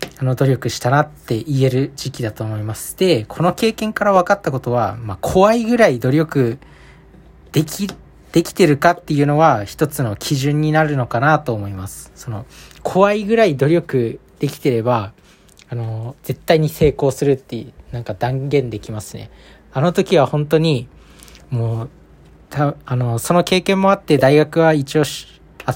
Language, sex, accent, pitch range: Japanese, male, native, 115-160 Hz